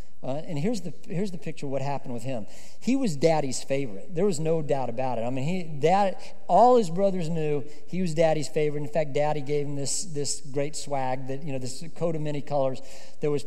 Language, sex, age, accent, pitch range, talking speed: English, male, 50-69, American, 155-210 Hz, 235 wpm